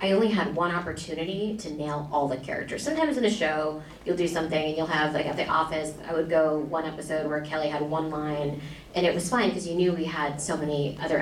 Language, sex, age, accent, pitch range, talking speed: English, female, 30-49, American, 145-170 Hz, 245 wpm